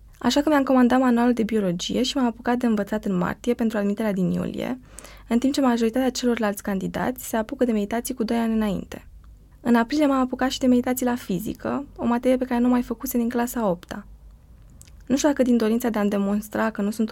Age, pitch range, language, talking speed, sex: 20-39, 205-250 Hz, Romanian, 215 wpm, female